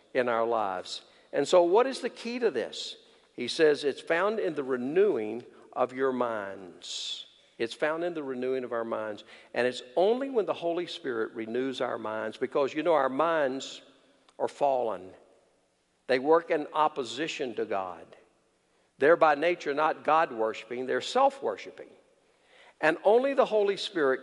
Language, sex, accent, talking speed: English, male, American, 160 wpm